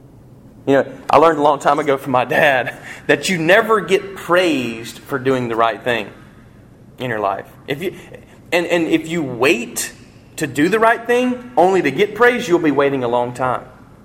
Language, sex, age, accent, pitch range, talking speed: English, male, 30-49, American, 120-140 Hz, 195 wpm